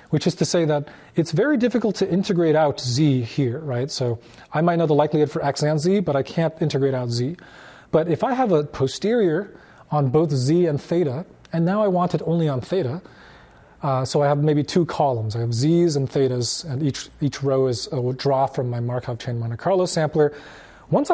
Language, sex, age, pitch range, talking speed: English, male, 30-49, 130-170 Hz, 215 wpm